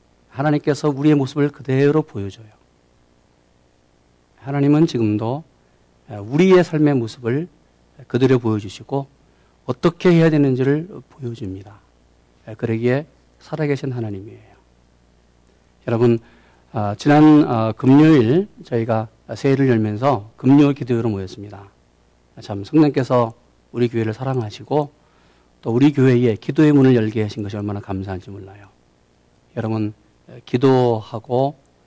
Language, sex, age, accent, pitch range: Korean, male, 40-59, native, 95-135 Hz